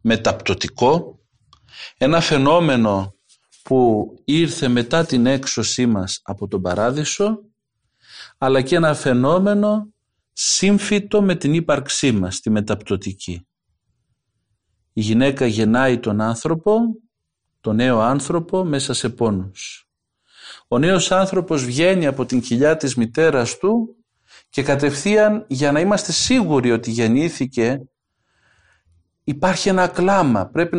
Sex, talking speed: male, 110 wpm